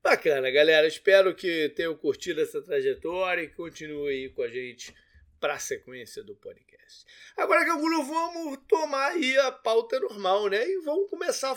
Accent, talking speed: Brazilian, 165 wpm